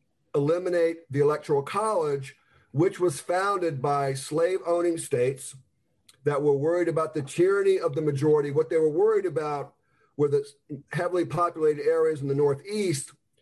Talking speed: 145 wpm